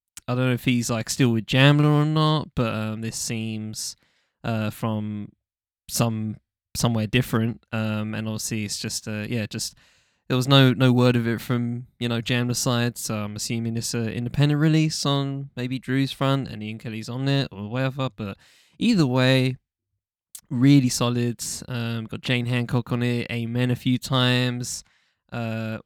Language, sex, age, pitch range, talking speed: English, male, 10-29, 110-135 Hz, 170 wpm